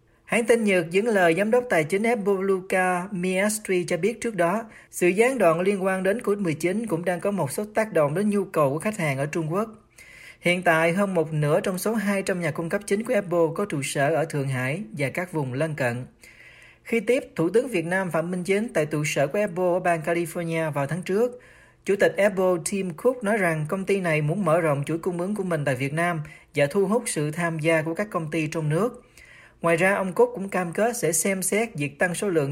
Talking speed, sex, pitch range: 240 wpm, male, 155-200 Hz